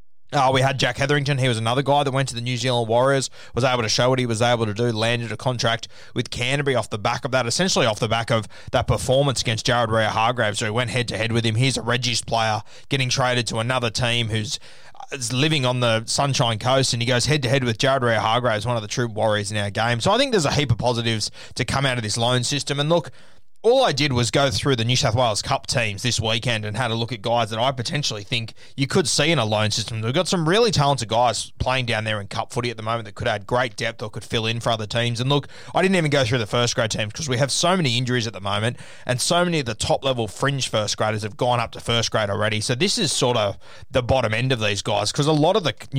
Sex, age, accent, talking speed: male, 20-39, Australian, 280 wpm